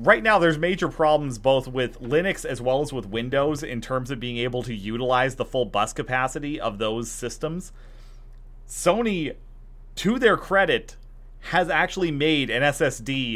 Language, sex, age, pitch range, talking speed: English, male, 30-49, 120-160 Hz, 160 wpm